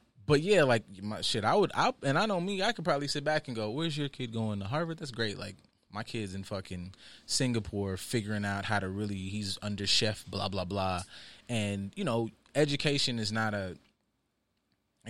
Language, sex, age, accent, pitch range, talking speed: English, male, 20-39, American, 100-140 Hz, 215 wpm